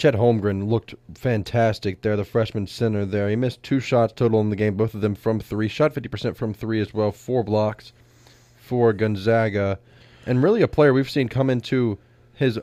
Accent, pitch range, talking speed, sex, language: American, 100-120 Hz, 195 wpm, male, English